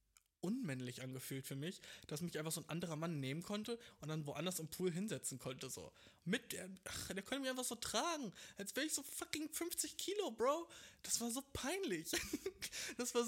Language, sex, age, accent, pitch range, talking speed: German, male, 20-39, German, 145-235 Hz, 200 wpm